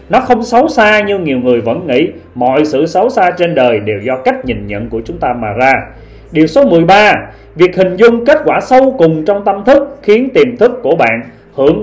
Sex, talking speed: male, 225 wpm